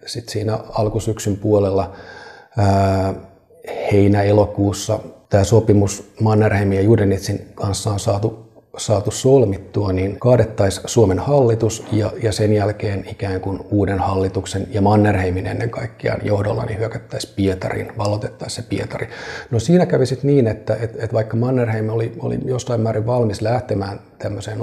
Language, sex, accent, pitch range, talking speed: Finnish, male, native, 100-115 Hz, 135 wpm